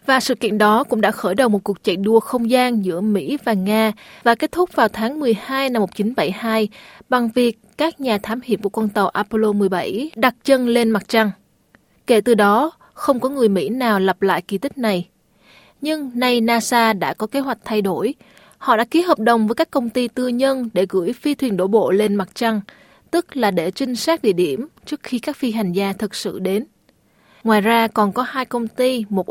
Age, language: 20-39, Vietnamese